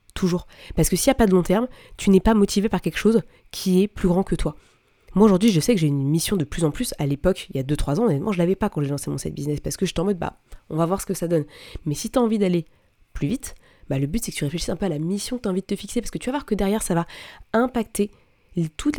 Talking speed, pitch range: 330 wpm, 165-210 Hz